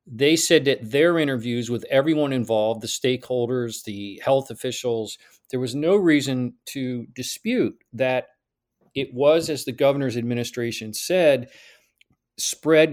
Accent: American